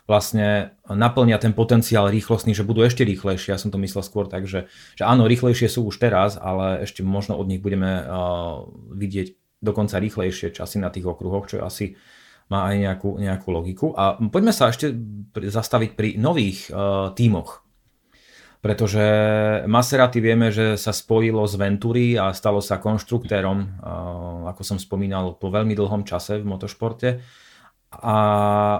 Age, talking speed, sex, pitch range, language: 30-49, 155 wpm, male, 100-115 Hz, Slovak